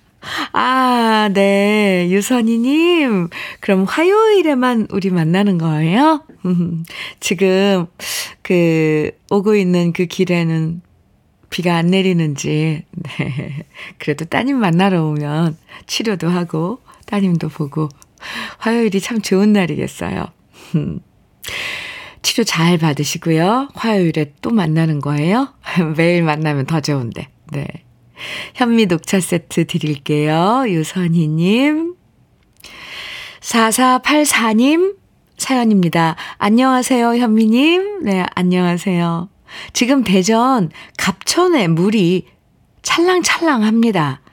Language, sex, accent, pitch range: Korean, female, native, 165-230 Hz